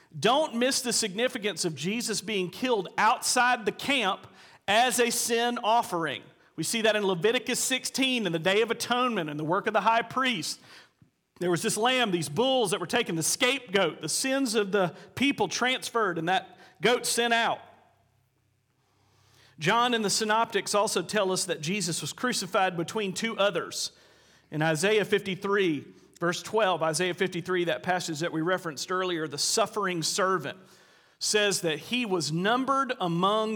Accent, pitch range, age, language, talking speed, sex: American, 170-230 Hz, 40-59, English, 165 wpm, male